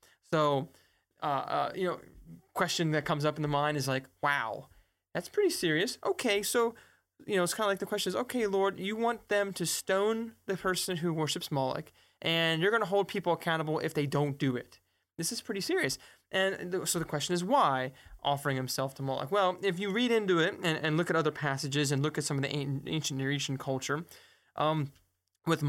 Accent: American